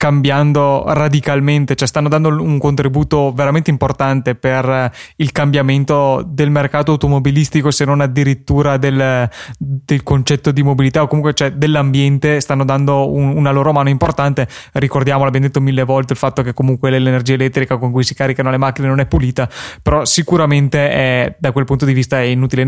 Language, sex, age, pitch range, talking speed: Italian, male, 20-39, 130-150 Hz, 170 wpm